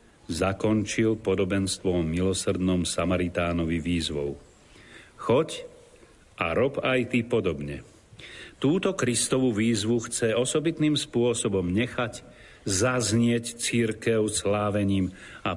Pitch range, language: 95-120 Hz, Slovak